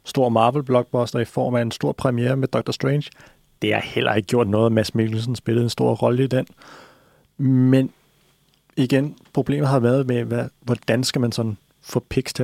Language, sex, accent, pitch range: Danish, male, native, 110-130 Hz